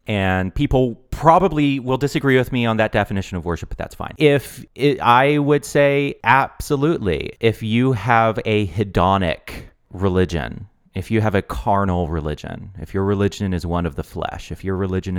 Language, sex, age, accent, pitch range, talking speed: English, male, 30-49, American, 90-120 Hz, 175 wpm